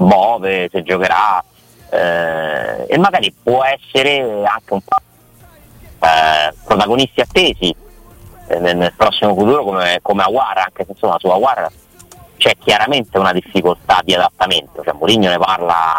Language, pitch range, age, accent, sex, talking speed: Italian, 80-100 Hz, 30-49, native, male, 140 wpm